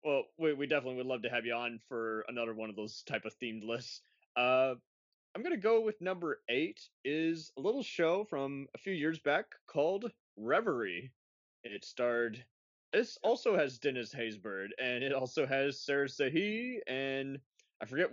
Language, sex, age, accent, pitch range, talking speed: English, male, 20-39, American, 115-140 Hz, 175 wpm